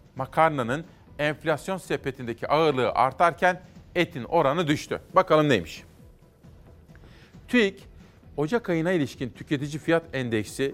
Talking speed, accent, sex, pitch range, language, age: 95 wpm, native, male, 135-170 Hz, Turkish, 40-59